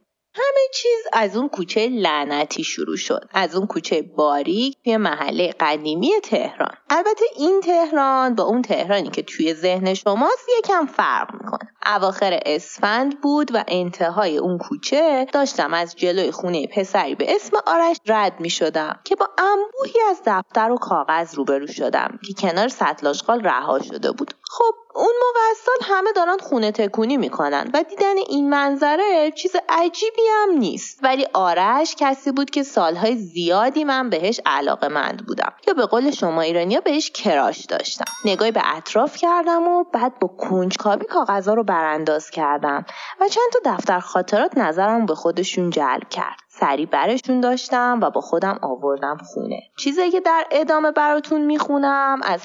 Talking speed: 155 wpm